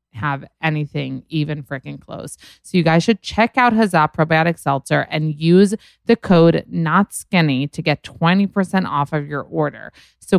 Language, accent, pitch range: English, American, 140-175 Hz